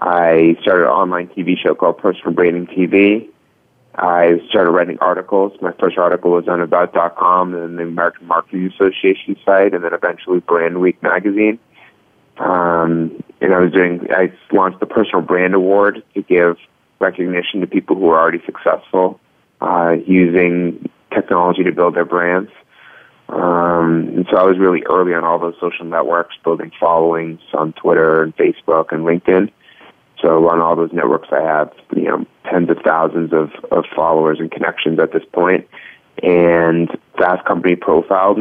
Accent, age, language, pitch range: American, 30-49, English, 85-90 Hz